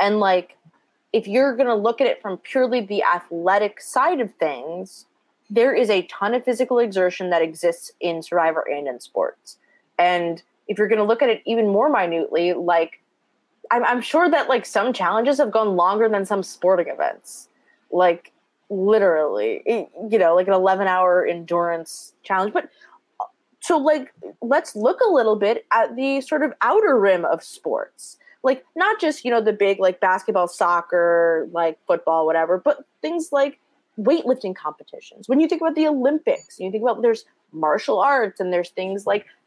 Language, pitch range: English, 180-275 Hz